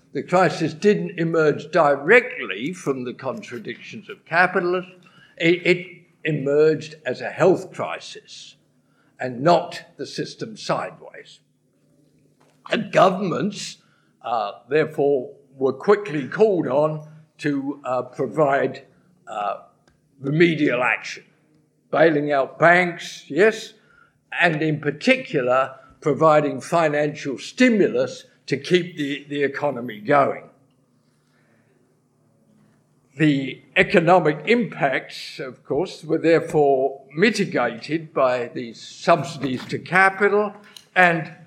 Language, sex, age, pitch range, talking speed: English, male, 60-79, 140-175 Hz, 95 wpm